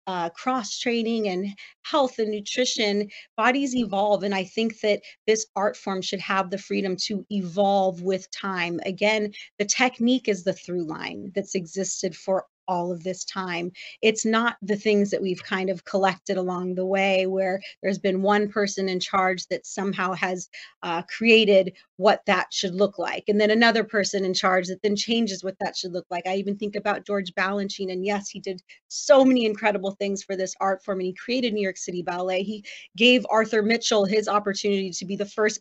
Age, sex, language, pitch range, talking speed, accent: 30-49, female, English, 190-210 Hz, 195 wpm, American